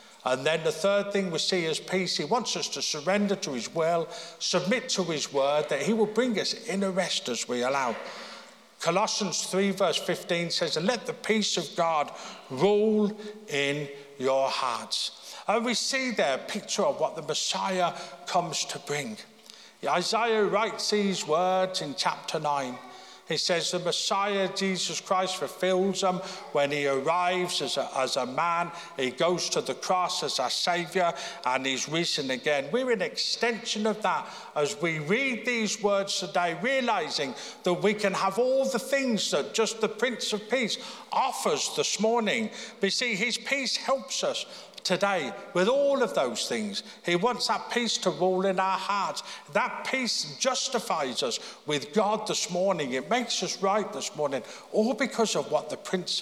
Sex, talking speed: male, 175 wpm